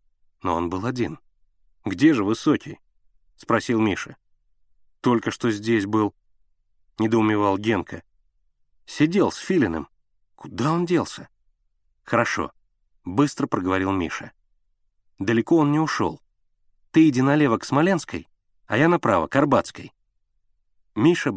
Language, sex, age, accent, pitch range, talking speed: Russian, male, 30-49, native, 100-140 Hz, 120 wpm